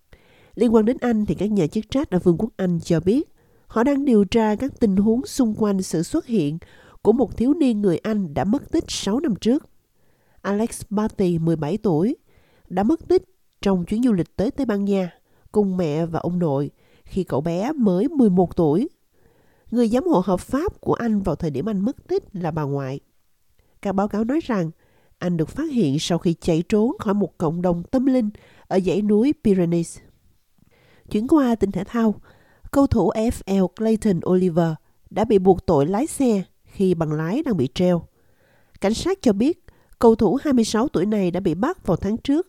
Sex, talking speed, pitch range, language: female, 200 wpm, 180-235 Hz, Vietnamese